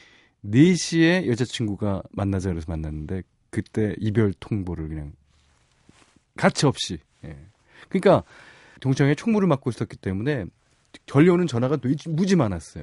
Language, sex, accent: Korean, male, native